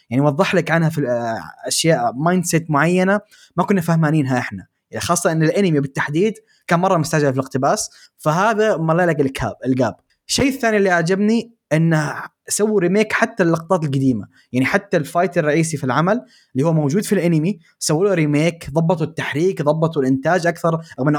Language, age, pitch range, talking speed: Arabic, 20-39, 135-180 Hz, 155 wpm